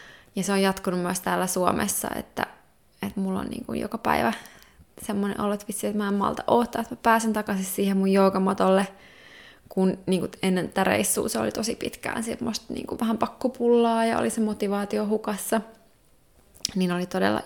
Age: 20-39